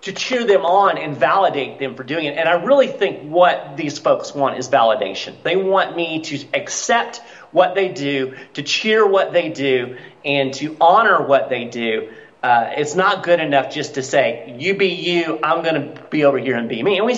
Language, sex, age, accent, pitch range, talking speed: English, male, 40-59, American, 135-190 Hz, 210 wpm